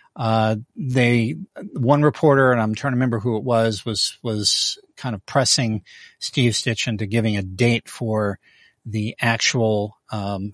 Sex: male